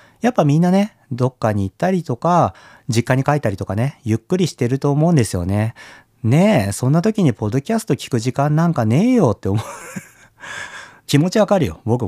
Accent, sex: native, male